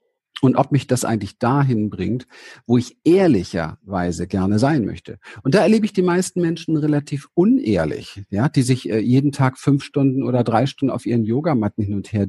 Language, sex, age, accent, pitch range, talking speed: German, male, 50-69, German, 110-140 Hz, 185 wpm